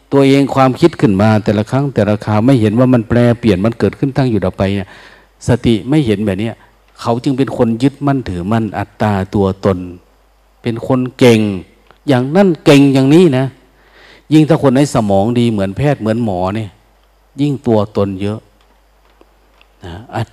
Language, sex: Thai, male